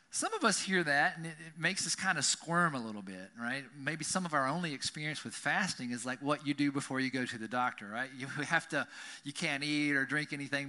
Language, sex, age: English, male, 40-59